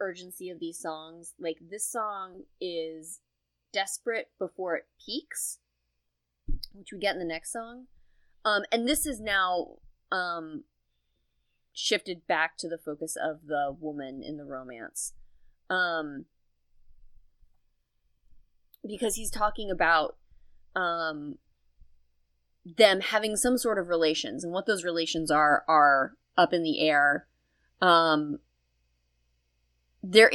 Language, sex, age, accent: English, female, 30-49, American